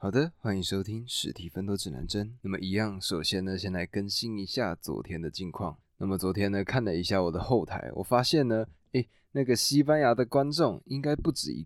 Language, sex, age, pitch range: Chinese, male, 20-39, 90-115 Hz